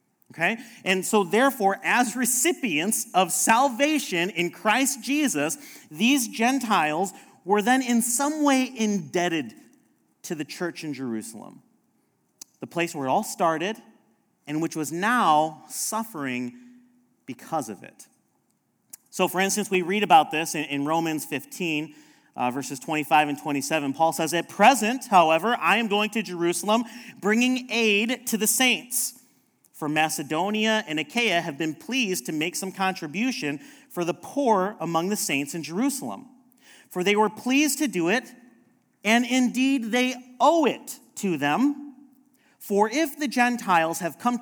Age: 30-49